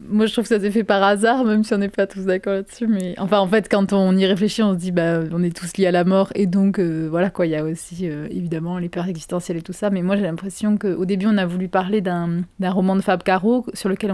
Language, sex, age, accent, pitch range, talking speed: French, female, 20-39, French, 185-210 Hz, 300 wpm